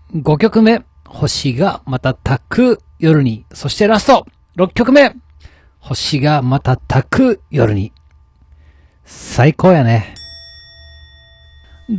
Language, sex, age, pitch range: Japanese, male, 40-59, 110-150 Hz